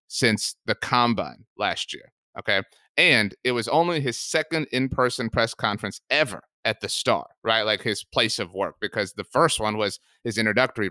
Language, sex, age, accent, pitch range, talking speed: English, male, 30-49, American, 120-175 Hz, 175 wpm